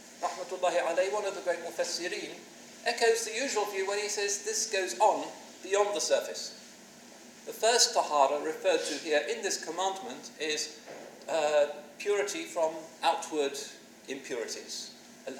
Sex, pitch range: male, 160-220 Hz